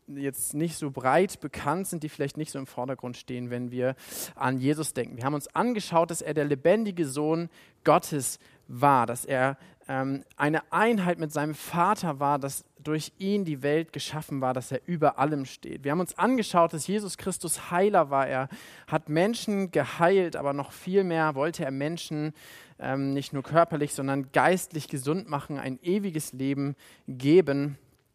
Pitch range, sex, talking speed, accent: 135-165 Hz, male, 175 wpm, German